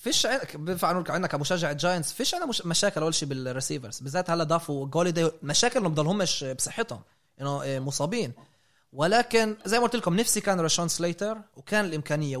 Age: 20-39